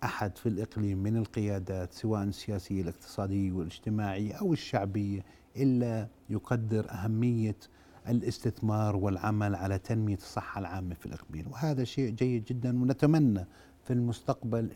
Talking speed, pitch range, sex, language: 120 wpm, 100-120 Hz, male, Arabic